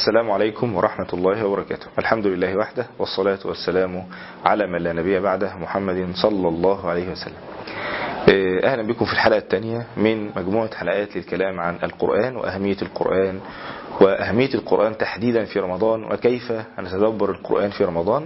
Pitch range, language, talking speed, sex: 95-120 Hz, Arabic, 140 wpm, male